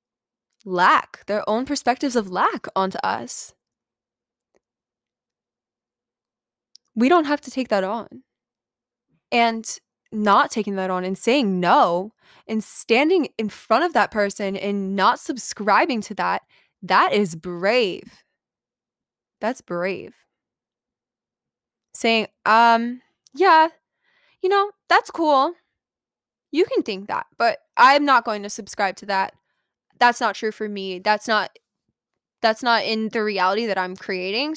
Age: 20-39